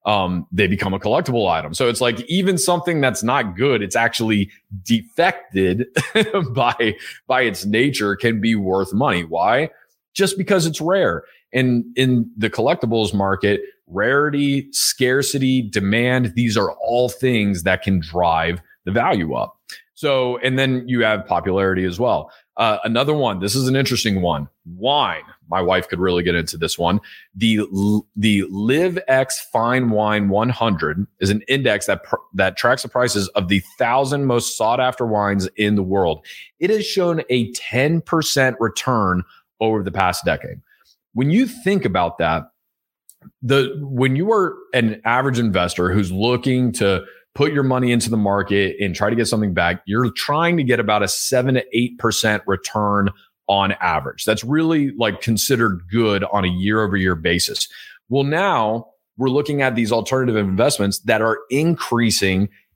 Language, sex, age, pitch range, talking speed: English, male, 30-49, 100-130 Hz, 160 wpm